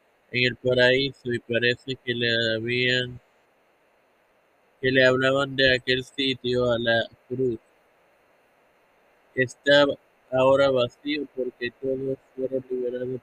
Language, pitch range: Spanish, 120-140 Hz